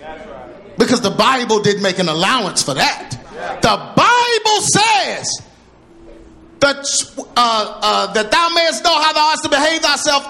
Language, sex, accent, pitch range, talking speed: English, male, American, 215-315 Hz, 145 wpm